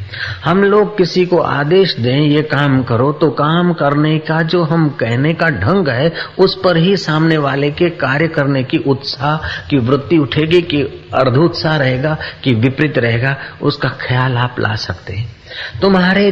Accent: native